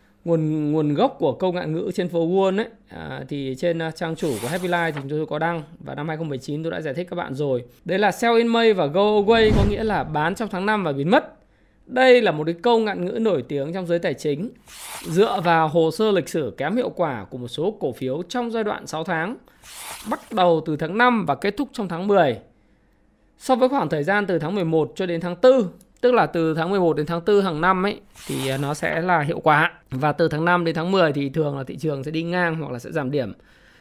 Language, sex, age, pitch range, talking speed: Vietnamese, male, 20-39, 155-200 Hz, 255 wpm